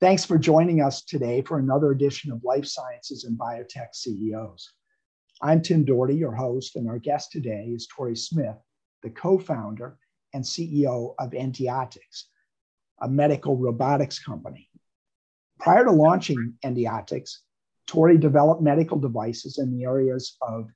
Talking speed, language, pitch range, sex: 140 wpm, English, 120-160 Hz, male